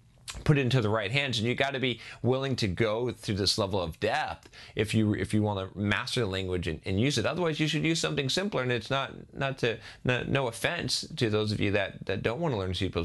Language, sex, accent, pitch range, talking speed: English, male, American, 100-130 Hz, 255 wpm